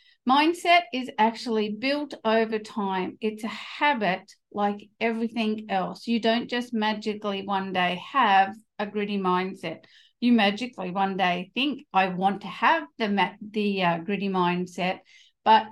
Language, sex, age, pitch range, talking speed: English, female, 50-69, 200-245 Hz, 145 wpm